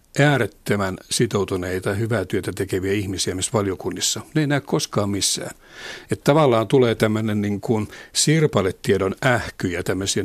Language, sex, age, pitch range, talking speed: Finnish, male, 60-79, 95-120 Hz, 125 wpm